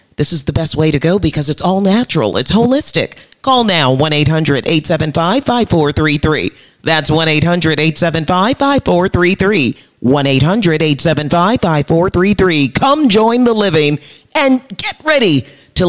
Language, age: English, 40-59